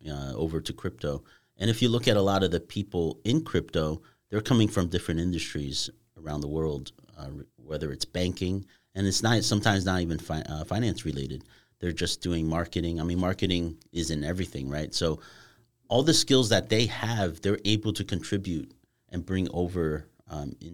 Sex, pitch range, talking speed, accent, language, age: male, 85-105 Hz, 180 wpm, American, English, 30-49